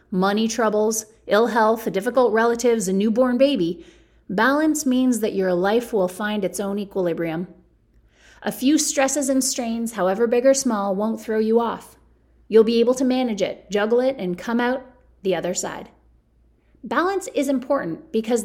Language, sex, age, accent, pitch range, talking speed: English, female, 30-49, American, 200-250 Hz, 165 wpm